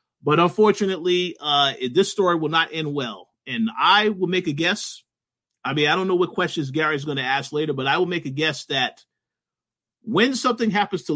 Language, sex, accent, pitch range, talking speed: English, male, American, 140-180 Hz, 205 wpm